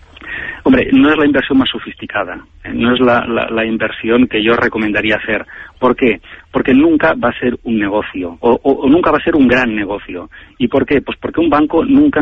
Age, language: 40-59, Spanish